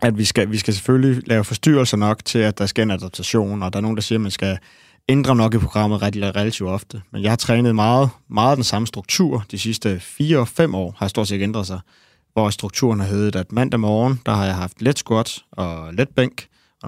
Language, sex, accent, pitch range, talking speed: Danish, male, native, 100-120 Hz, 240 wpm